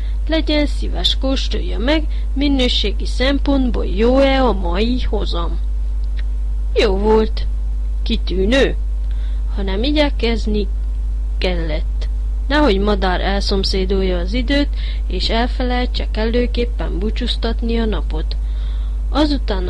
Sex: female